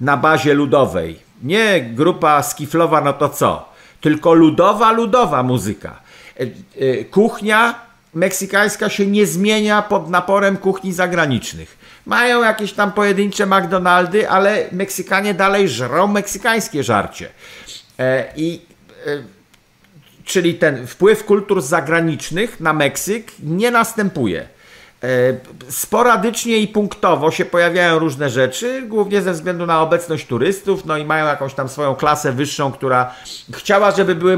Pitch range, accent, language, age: 150-205 Hz, native, Polish, 50-69